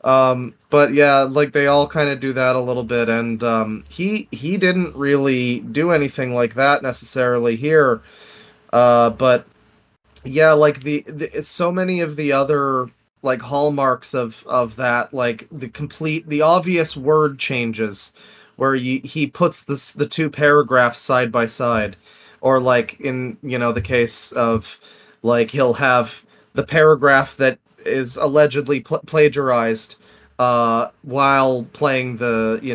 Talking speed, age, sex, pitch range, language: 150 wpm, 30-49, male, 120-150 Hz, English